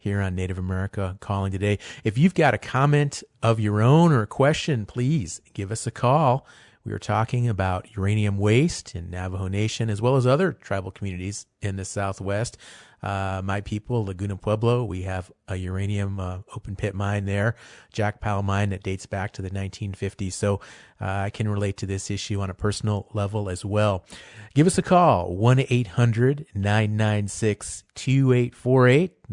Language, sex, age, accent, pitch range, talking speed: English, male, 40-59, American, 100-120 Hz, 170 wpm